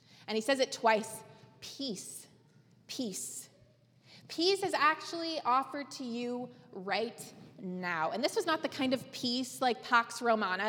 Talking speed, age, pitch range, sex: 145 wpm, 20-39, 215-275 Hz, female